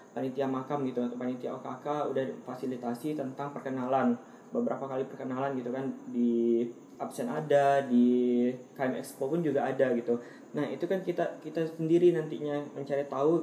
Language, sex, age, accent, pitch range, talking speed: Indonesian, male, 20-39, native, 135-160 Hz, 150 wpm